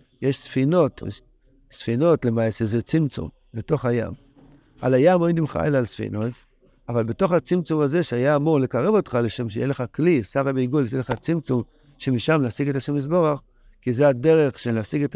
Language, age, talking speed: Hebrew, 60-79, 170 wpm